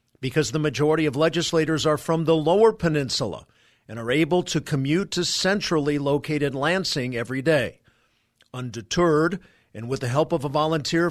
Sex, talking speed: male, 155 wpm